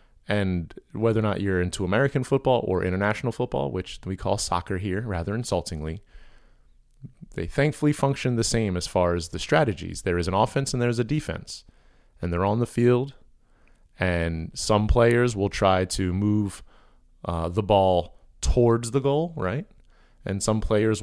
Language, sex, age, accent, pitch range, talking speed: English, male, 30-49, American, 90-115 Hz, 165 wpm